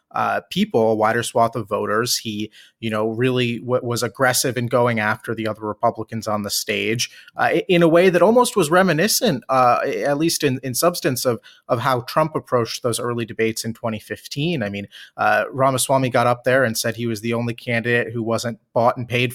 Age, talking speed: 30-49, 205 wpm